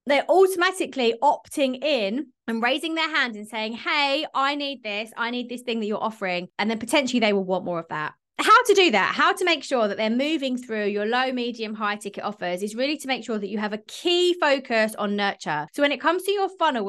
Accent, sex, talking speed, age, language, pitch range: British, female, 240 wpm, 20-39, English, 205-275 Hz